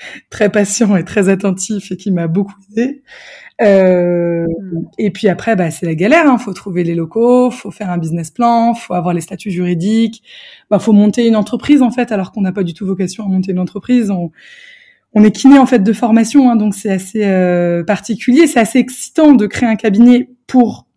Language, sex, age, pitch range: French, female, 20-39, 185-240 Hz